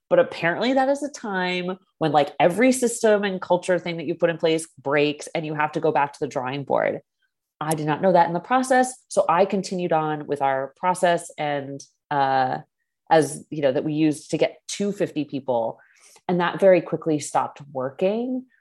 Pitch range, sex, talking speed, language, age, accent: 135-175 Hz, female, 200 wpm, English, 30-49, American